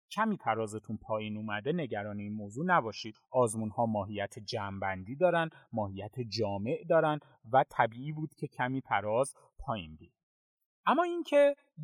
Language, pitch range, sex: Persian, 110-165 Hz, male